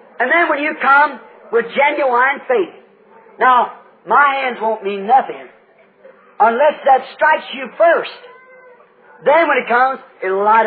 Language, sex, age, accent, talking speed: English, male, 50-69, American, 140 wpm